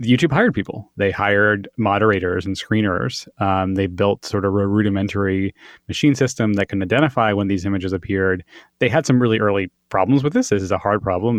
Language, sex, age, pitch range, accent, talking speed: English, male, 20-39, 95-110 Hz, American, 195 wpm